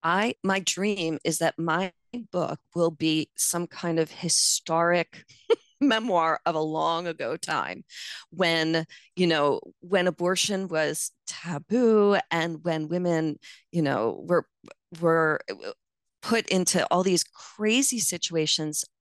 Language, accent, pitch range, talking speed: English, American, 165-200 Hz, 125 wpm